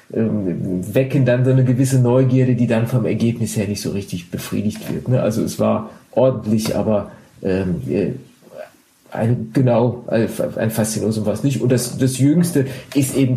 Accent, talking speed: German, 155 wpm